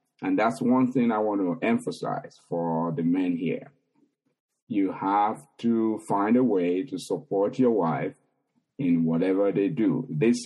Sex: male